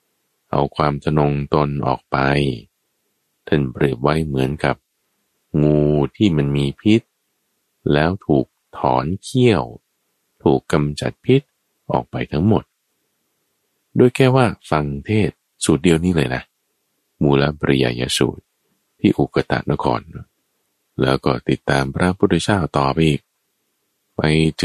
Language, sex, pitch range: Thai, male, 70-90 Hz